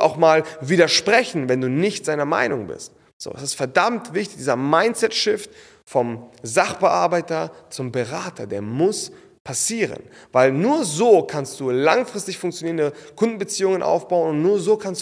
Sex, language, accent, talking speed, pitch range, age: male, German, German, 145 wpm, 120-170 Hz, 30-49